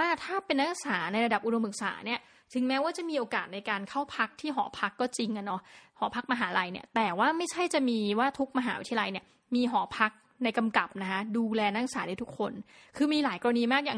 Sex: female